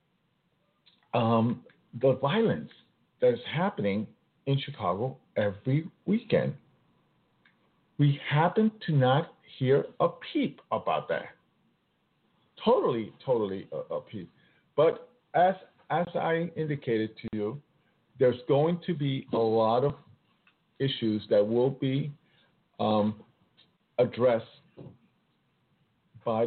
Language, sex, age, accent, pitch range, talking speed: English, male, 50-69, American, 110-160 Hz, 100 wpm